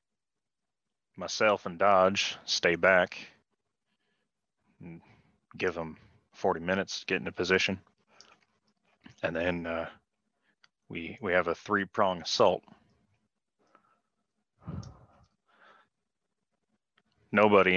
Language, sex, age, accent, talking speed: English, male, 30-49, American, 85 wpm